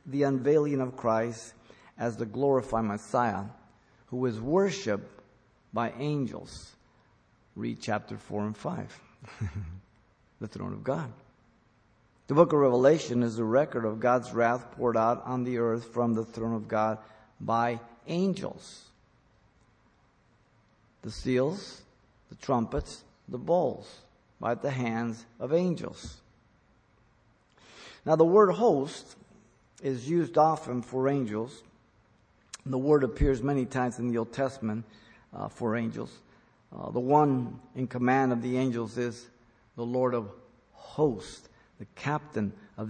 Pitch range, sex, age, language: 110-130 Hz, male, 50-69, English